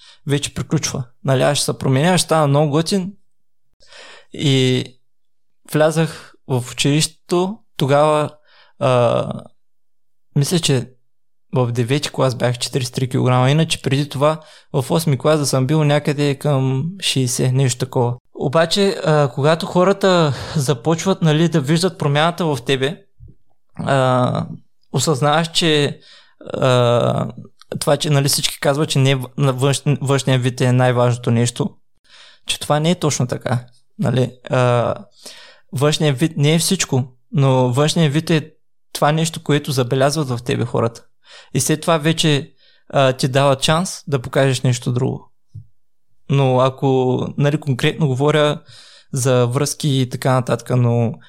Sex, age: male, 20-39